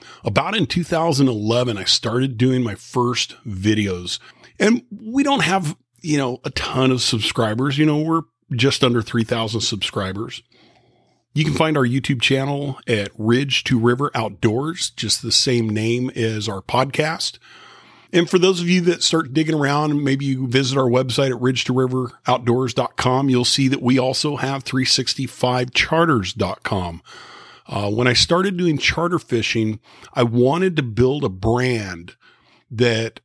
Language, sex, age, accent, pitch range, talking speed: English, male, 40-59, American, 115-140 Hz, 145 wpm